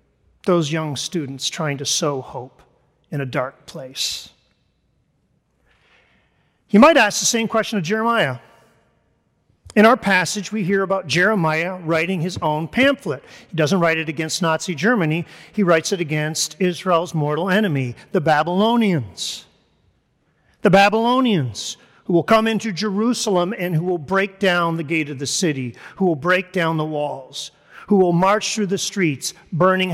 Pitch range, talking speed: 160-220 Hz, 150 wpm